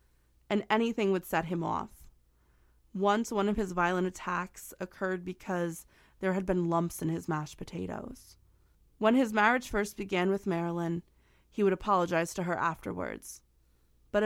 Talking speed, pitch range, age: 150 wpm, 165-205 Hz, 20-39